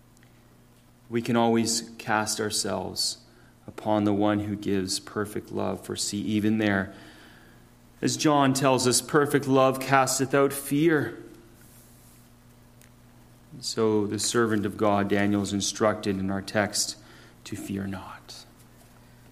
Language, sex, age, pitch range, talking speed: English, male, 30-49, 100-130 Hz, 120 wpm